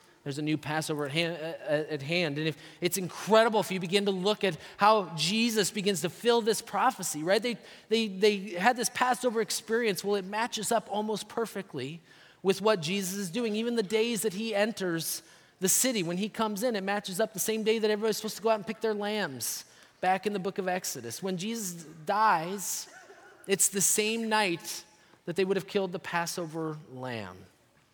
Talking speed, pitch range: 195 wpm, 170-215 Hz